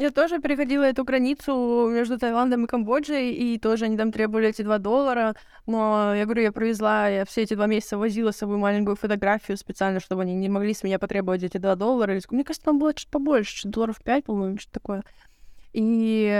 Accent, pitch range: native, 205-270 Hz